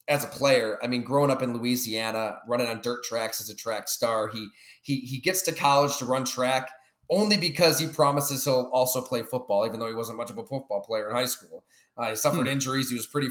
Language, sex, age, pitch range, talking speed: English, male, 20-39, 115-145 Hz, 240 wpm